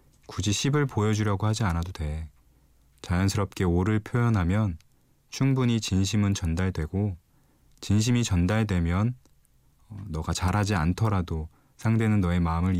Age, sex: 20-39, male